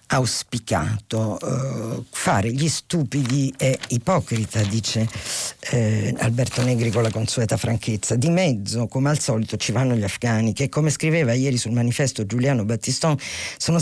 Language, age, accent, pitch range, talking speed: Italian, 50-69, native, 115-145 Hz, 145 wpm